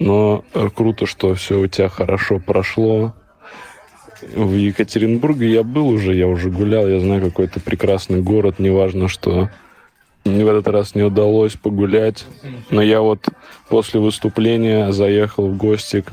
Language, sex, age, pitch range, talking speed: Russian, male, 20-39, 100-110 Hz, 145 wpm